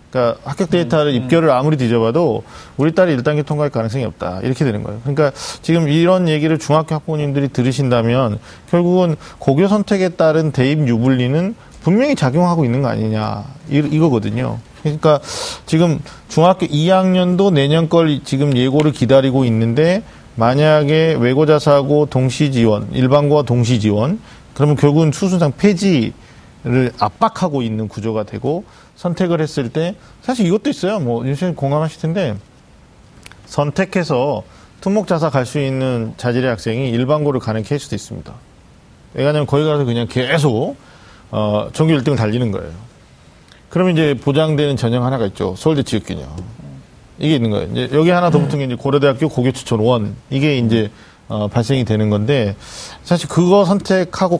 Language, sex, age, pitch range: Korean, male, 40-59, 120-160 Hz